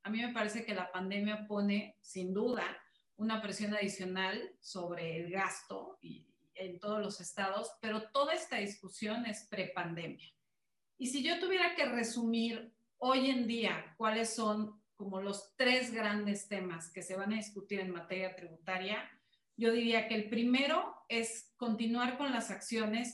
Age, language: 40-59, Spanish